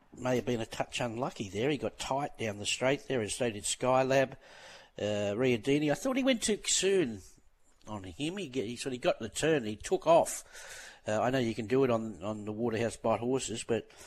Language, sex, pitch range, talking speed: English, male, 105-135 Hz, 225 wpm